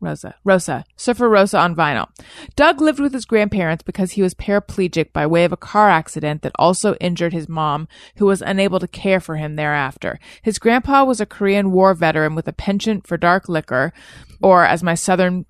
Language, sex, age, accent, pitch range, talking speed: English, female, 30-49, American, 165-210 Hz, 200 wpm